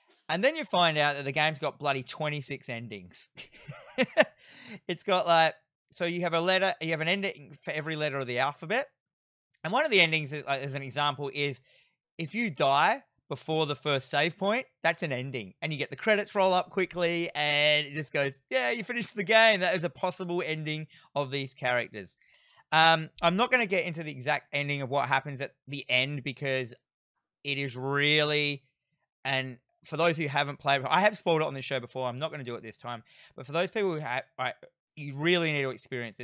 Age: 20-39